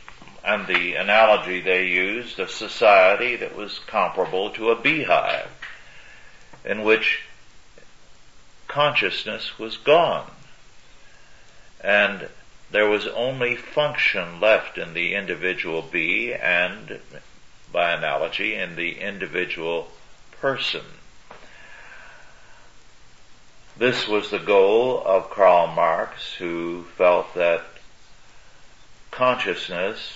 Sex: male